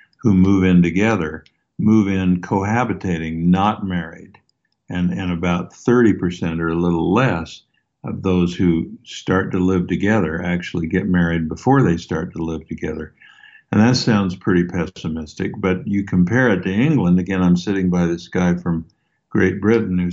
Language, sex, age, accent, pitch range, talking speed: English, male, 60-79, American, 90-100 Hz, 160 wpm